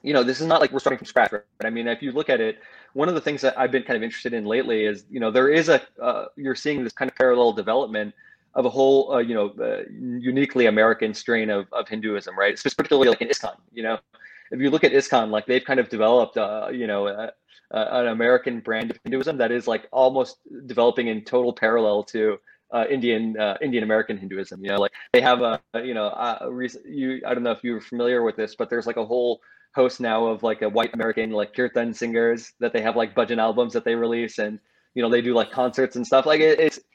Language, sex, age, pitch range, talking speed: English, male, 20-39, 110-130 Hz, 255 wpm